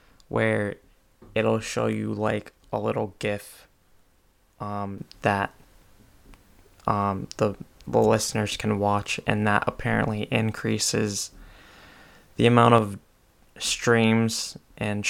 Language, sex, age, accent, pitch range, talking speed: English, male, 20-39, American, 100-110 Hz, 100 wpm